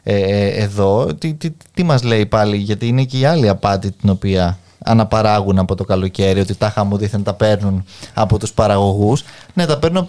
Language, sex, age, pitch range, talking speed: Greek, male, 20-39, 110-165 Hz, 190 wpm